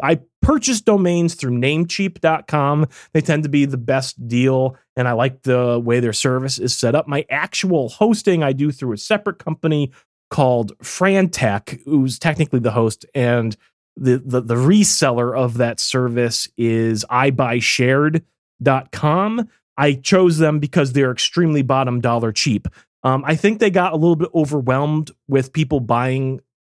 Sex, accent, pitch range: male, American, 115-150 Hz